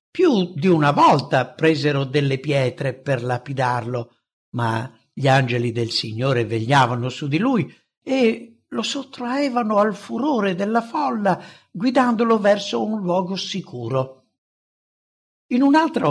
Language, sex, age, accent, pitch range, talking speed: English, male, 60-79, Italian, 130-205 Hz, 120 wpm